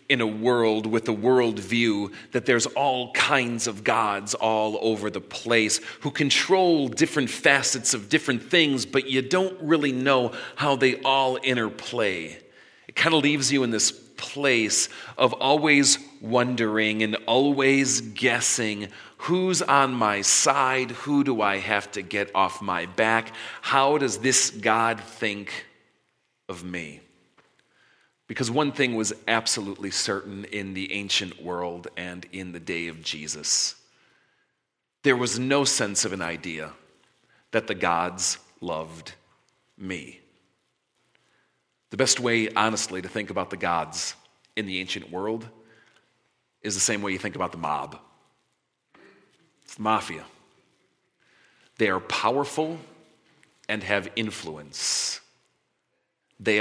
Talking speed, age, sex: 135 wpm, 40-59, male